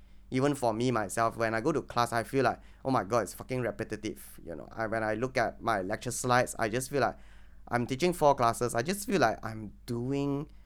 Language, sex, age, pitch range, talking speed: English, male, 20-39, 105-125 Hz, 230 wpm